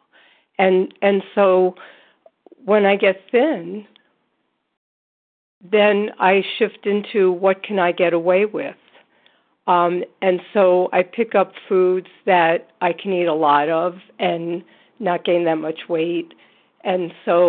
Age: 50-69